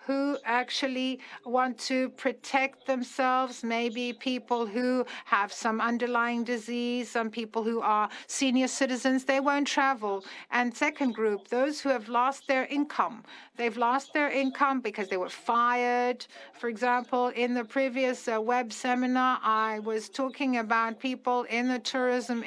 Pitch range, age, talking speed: 235-270 Hz, 60-79, 145 wpm